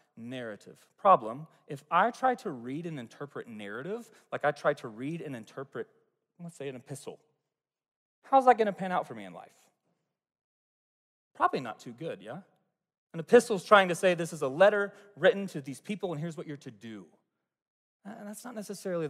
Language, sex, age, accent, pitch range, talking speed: English, male, 30-49, American, 145-195 Hz, 180 wpm